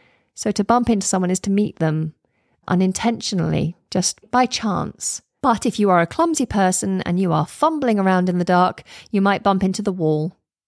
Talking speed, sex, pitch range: 190 wpm, female, 165-210 Hz